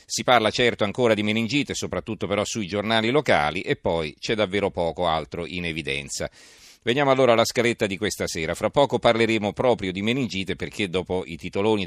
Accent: native